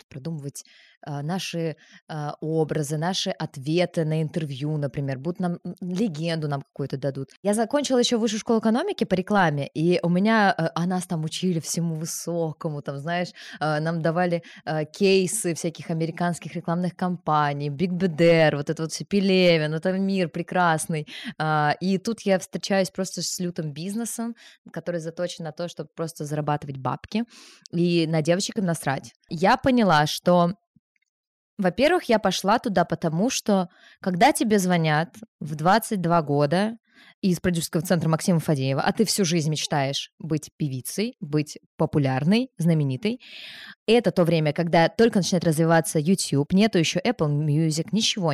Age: 20-39